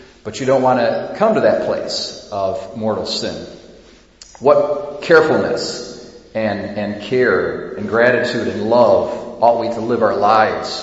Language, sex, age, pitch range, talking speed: English, male, 40-59, 105-120 Hz, 150 wpm